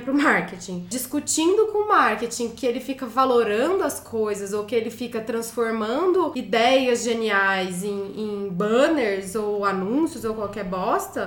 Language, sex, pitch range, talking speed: Portuguese, female, 250-360 Hz, 145 wpm